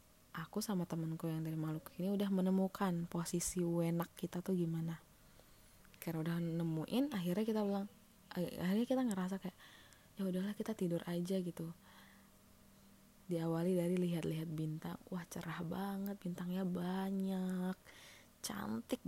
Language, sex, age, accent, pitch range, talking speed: Indonesian, female, 20-39, native, 165-205 Hz, 125 wpm